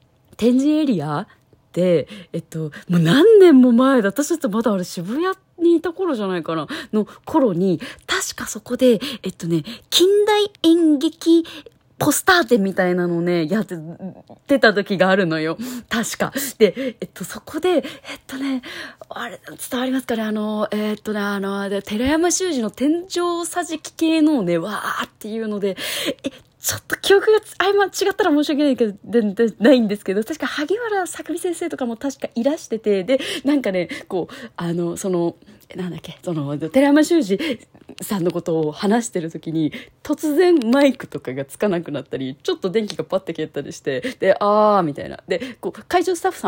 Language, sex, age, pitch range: Japanese, female, 20-39, 170-275 Hz